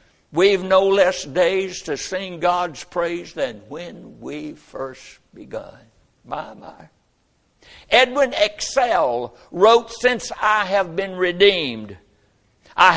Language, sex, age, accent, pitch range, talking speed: English, male, 60-79, American, 150-205 Hz, 110 wpm